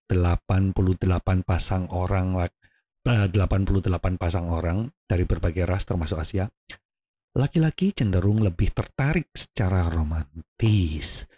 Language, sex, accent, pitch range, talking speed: Indonesian, male, native, 90-120 Hz, 90 wpm